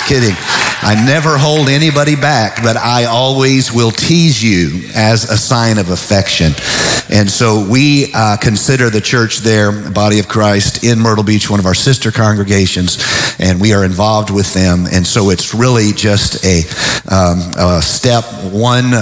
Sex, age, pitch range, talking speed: male, 40-59, 100-120 Hz, 165 wpm